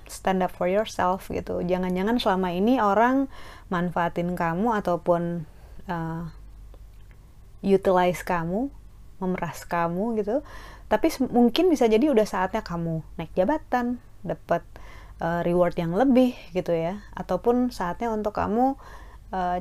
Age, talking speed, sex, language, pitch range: 20-39, 120 wpm, female, Indonesian, 170-230 Hz